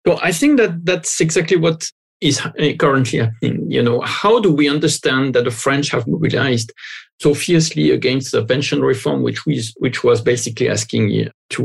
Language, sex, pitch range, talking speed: English, male, 140-180 Hz, 175 wpm